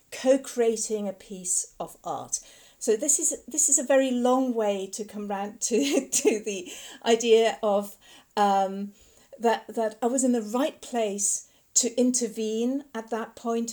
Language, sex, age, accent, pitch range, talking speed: English, female, 40-59, British, 200-245 Hz, 155 wpm